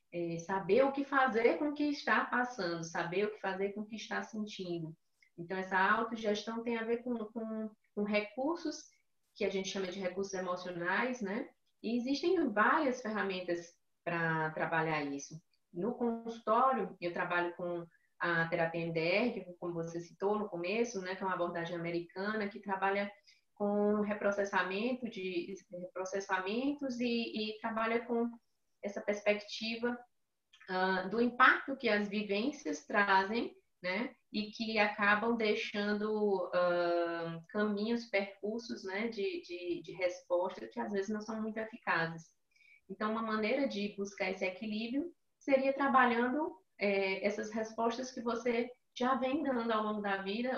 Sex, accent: female, Brazilian